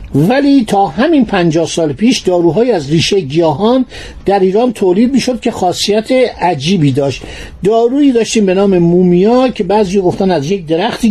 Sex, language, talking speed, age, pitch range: male, Persian, 155 wpm, 50-69, 170-225 Hz